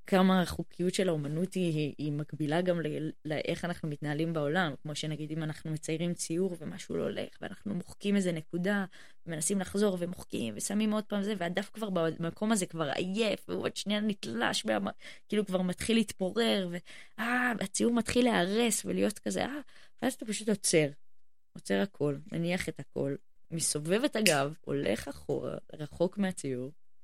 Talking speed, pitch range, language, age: 155 wpm, 160-235 Hz, Hebrew, 20-39